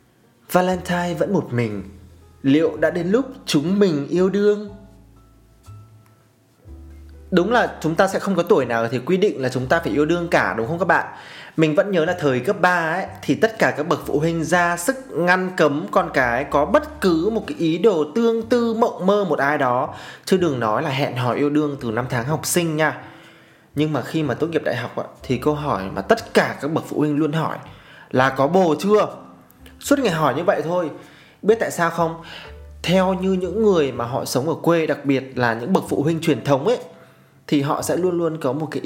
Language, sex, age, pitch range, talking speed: Vietnamese, male, 20-39, 125-175 Hz, 225 wpm